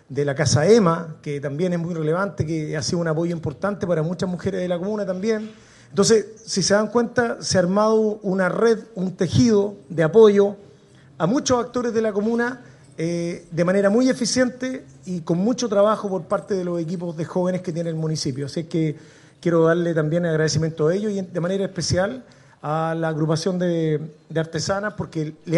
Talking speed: 190 wpm